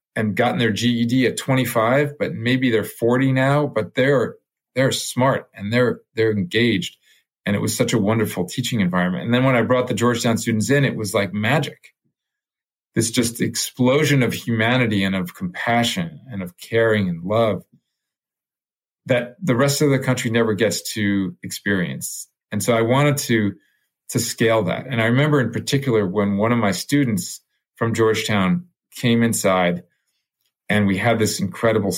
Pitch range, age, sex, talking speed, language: 105-125 Hz, 40-59, male, 170 wpm, English